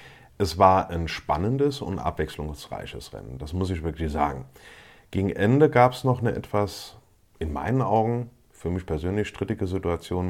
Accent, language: German, German